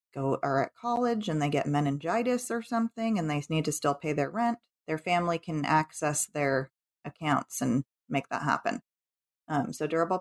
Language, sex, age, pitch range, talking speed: English, female, 30-49, 150-185 Hz, 175 wpm